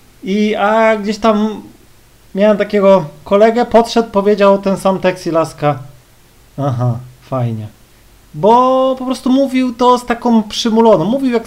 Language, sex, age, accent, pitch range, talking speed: Polish, male, 30-49, native, 160-225 Hz, 135 wpm